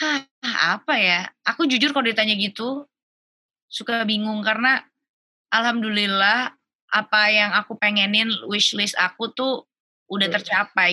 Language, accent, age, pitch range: Indonesian, native, 20-39, 190-230 Hz